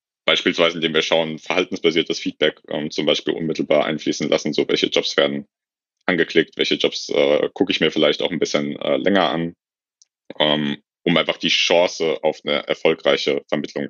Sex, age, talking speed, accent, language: male, 30-49, 170 wpm, German, German